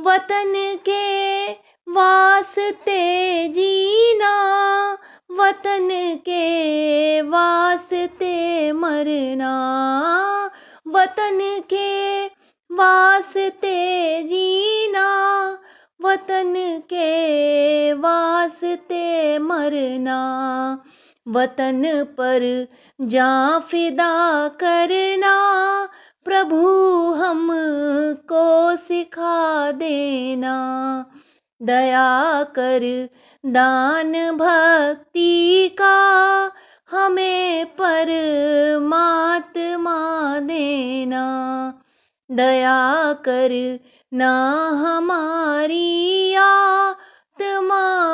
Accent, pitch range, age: native, 285-375 Hz, 30-49